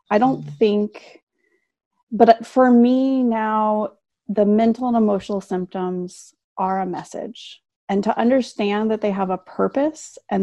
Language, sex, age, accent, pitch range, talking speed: English, female, 30-49, American, 185-235 Hz, 140 wpm